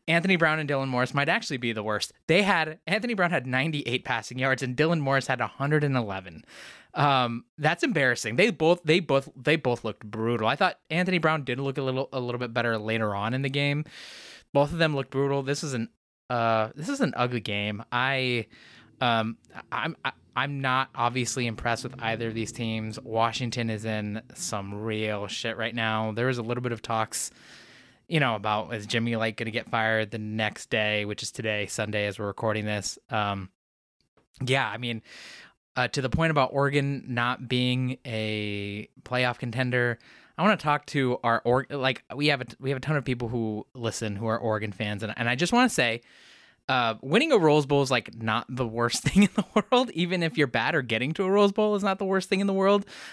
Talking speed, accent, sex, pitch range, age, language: 215 wpm, American, male, 115-145 Hz, 20-39, English